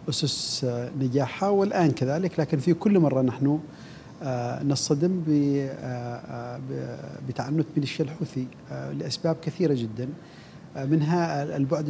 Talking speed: 95 wpm